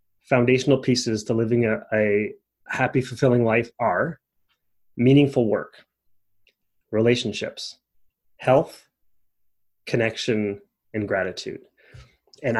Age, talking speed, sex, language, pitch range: 30-49, 85 wpm, male, English, 110-140 Hz